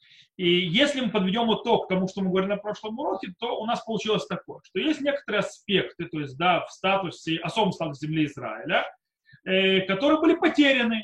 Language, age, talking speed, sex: Russian, 30-49, 185 wpm, male